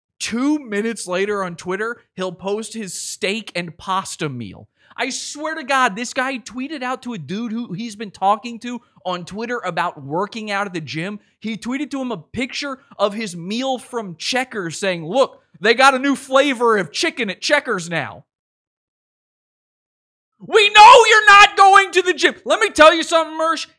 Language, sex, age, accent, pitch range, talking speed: English, male, 30-49, American, 140-230 Hz, 185 wpm